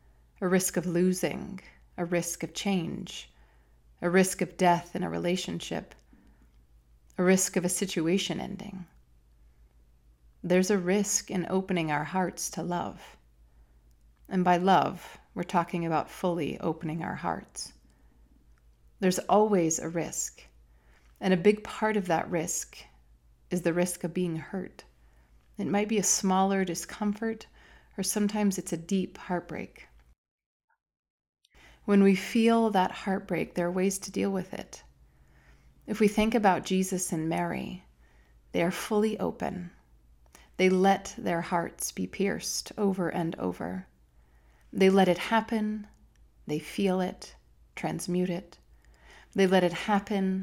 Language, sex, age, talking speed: English, female, 30-49, 135 wpm